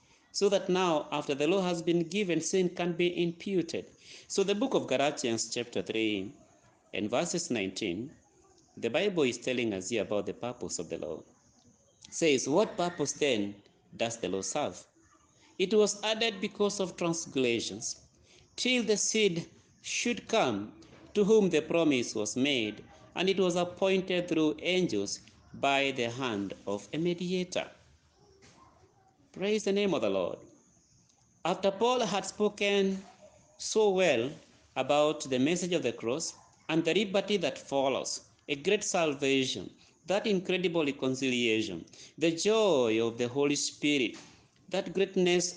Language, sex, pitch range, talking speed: English, male, 130-190 Hz, 145 wpm